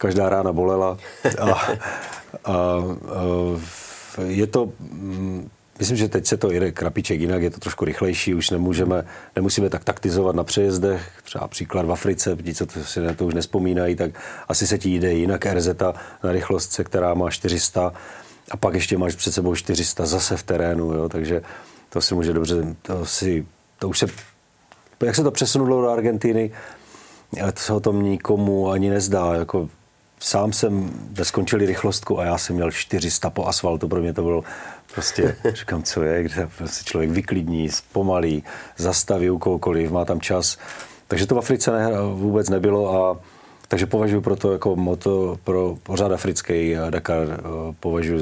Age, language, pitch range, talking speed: 40-59, Czech, 85-100 Hz, 170 wpm